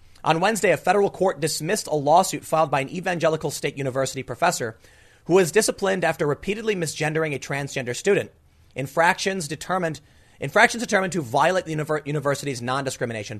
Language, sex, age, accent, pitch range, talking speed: English, male, 30-49, American, 130-180 Hz, 150 wpm